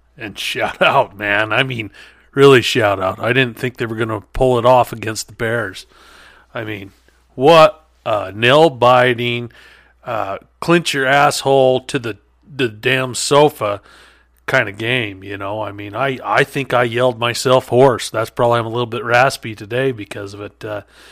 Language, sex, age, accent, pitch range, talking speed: English, male, 40-59, American, 110-135 Hz, 180 wpm